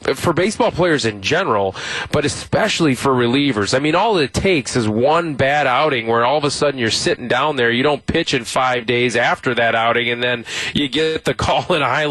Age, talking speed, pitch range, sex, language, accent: 20-39, 225 wpm, 120-155 Hz, male, English, American